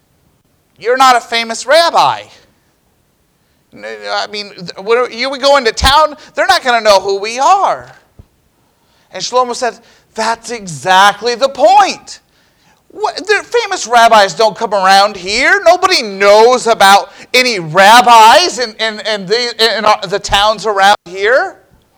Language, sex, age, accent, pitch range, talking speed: English, male, 40-59, American, 165-265 Hz, 135 wpm